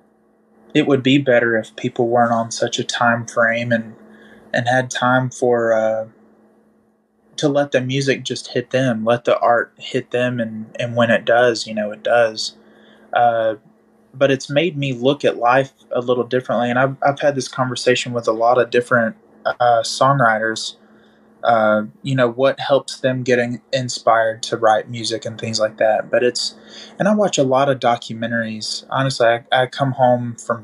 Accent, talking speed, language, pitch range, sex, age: American, 180 wpm, English, 115-130 Hz, male, 20-39